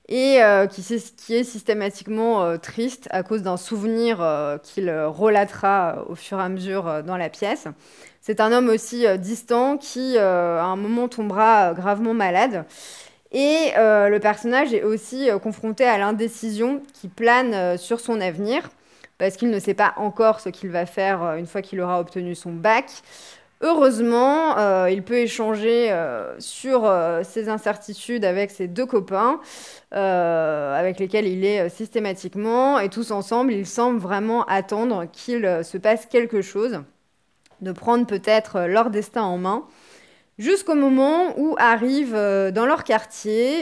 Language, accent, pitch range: French, French, 190-240 Hz